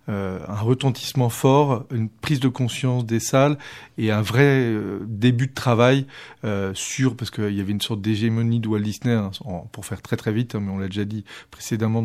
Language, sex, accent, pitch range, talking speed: French, male, French, 110-130 Hz, 205 wpm